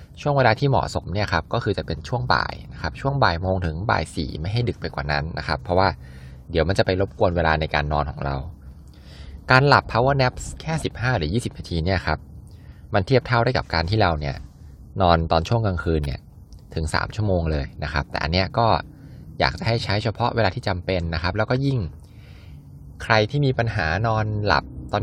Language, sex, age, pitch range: Thai, male, 20-39, 75-110 Hz